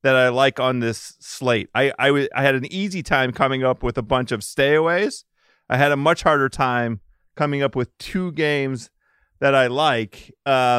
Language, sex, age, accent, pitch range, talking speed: English, male, 40-59, American, 120-150 Hz, 200 wpm